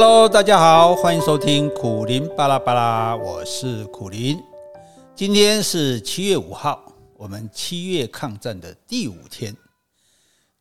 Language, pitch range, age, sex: Chinese, 115-175 Hz, 50-69, male